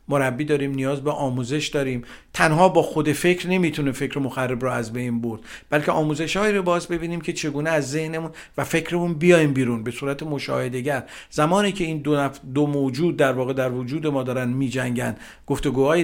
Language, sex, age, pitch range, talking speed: Persian, male, 50-69, 135-165 Hz, 185 wpm